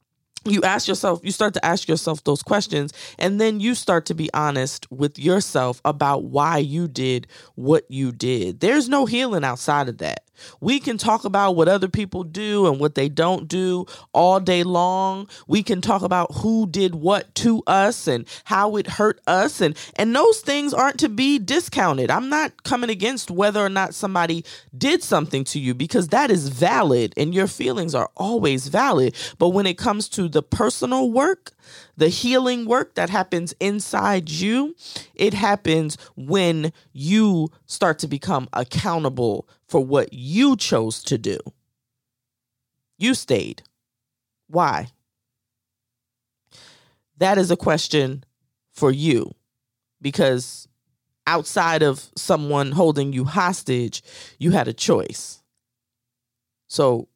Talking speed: 150 wpm